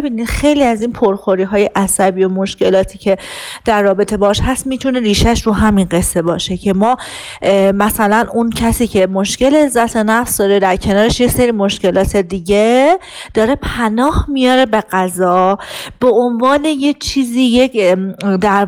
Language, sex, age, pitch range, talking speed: Persian, female, 40-59, 205-260 Hz, 145 wpm